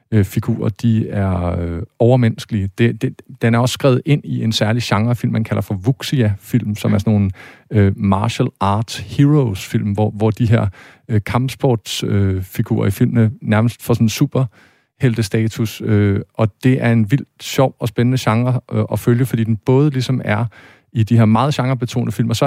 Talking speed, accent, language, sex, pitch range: 180 wpm, native, Danish, male, 105-125 Hz